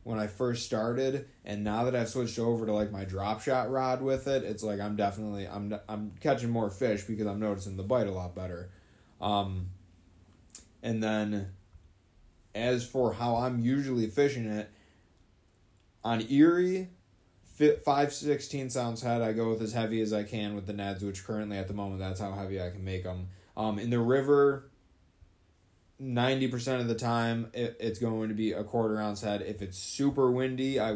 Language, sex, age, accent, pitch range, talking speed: English, male, 20-39, American, 100-120 Hz, 185 wpm